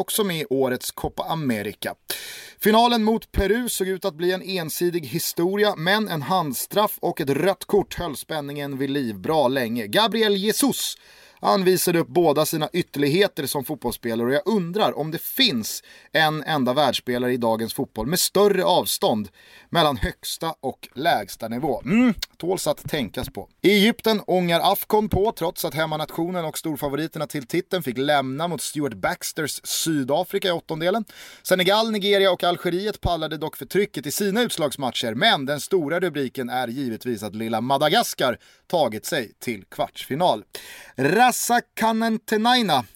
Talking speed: 150 wpm